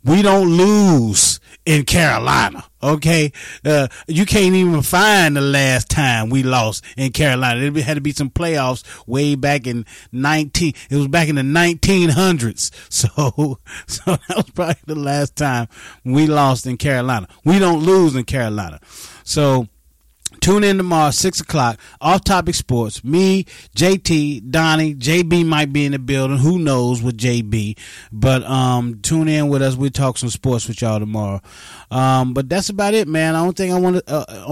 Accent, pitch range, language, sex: American, 125-165 Hz, English, male